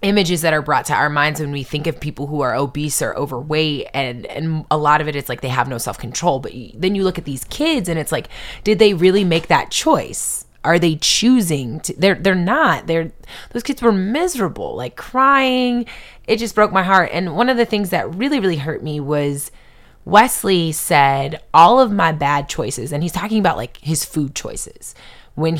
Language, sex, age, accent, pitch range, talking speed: English, female, 20-39, American, 140-185 Hz, 210 wpm